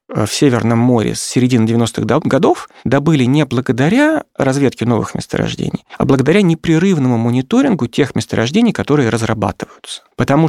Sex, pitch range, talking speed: male, 115-155 Hz, 125 wpm